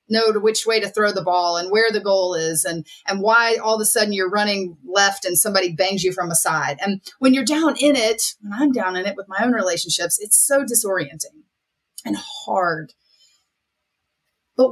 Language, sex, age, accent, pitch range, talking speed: English, female, 30-49, American, 175-280 Hz, 210 wpm